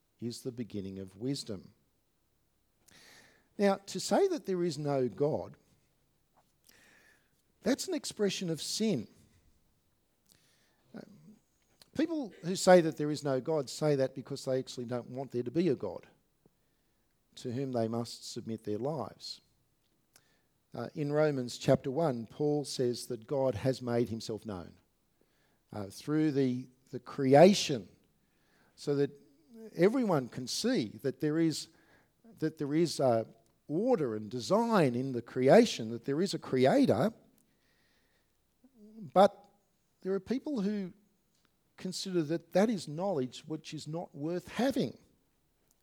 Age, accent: 50-69, Australian